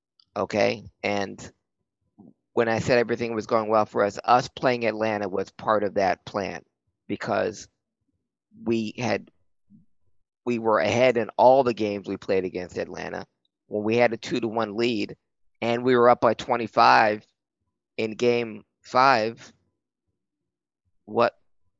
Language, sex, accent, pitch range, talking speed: English, male, American, 100-120 Hz, 145 wpm